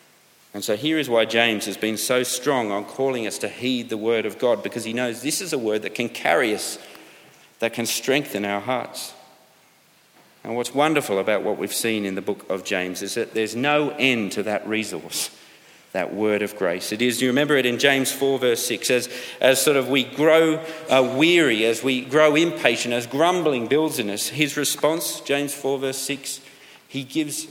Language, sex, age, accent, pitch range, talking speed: English, male, 40-59, Australian, 105-135 Hz, 205 wpm